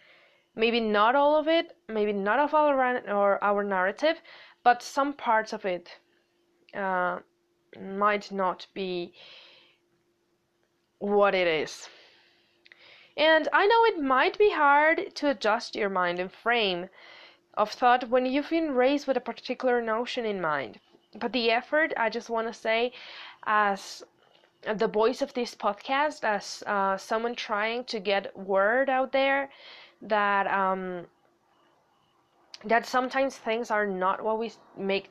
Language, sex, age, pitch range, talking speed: English, female, 20-39, 205-280 Hz, 140 wpm